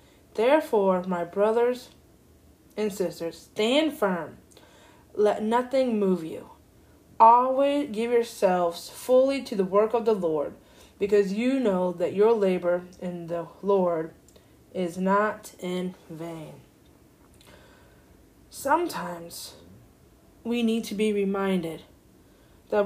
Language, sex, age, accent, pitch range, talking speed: English, female, 20-39, American, 180-230 Hz, 110 wpm